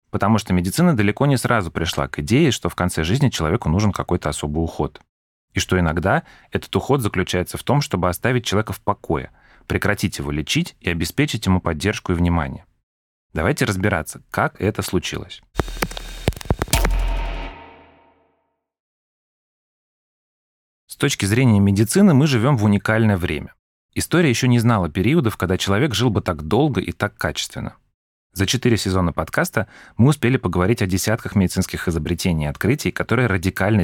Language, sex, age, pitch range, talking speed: Russian, male, 30-49, 85-115 Hz, 145 wpm